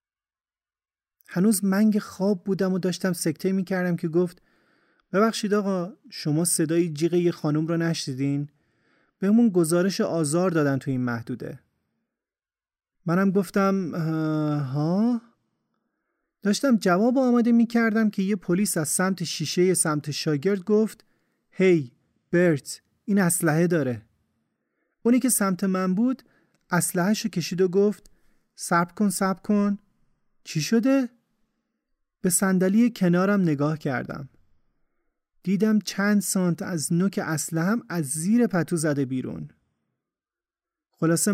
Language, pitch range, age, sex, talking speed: Persian, 160-205 Hz, 30-49, male, 115 wpm